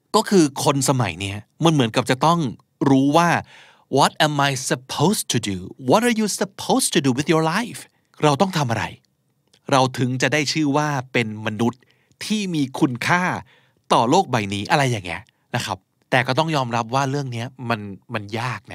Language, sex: Thai, male